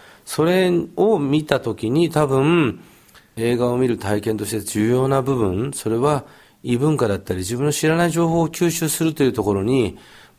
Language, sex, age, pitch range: Japanese, male, 40-59, 105-145 Hz